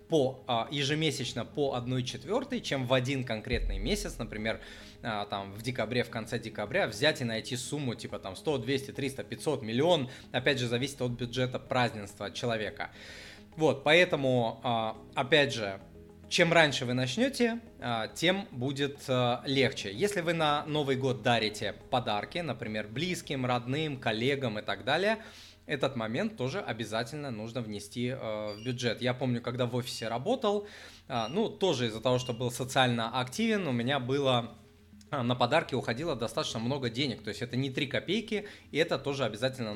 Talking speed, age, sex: 150 wpm, 20-39, male